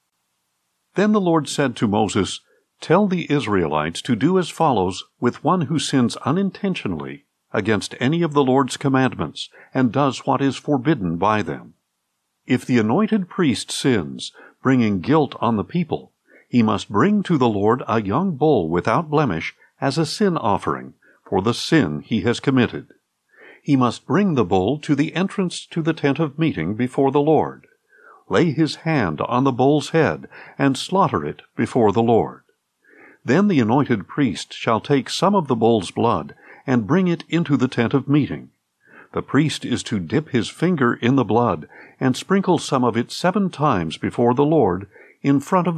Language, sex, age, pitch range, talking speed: English, male, 60-79, 115-165 Hz, 175 wpm